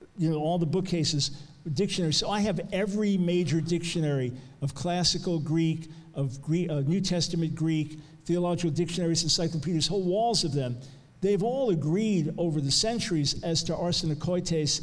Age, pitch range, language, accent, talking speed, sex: 50-69, 150-180 Hz, English, American, 140 wpm, male